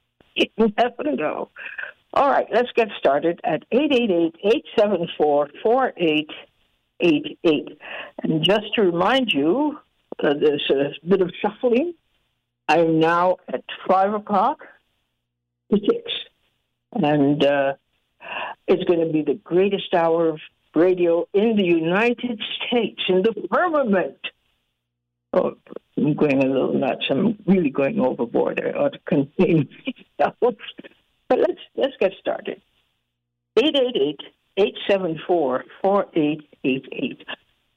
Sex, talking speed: female, 105 wpm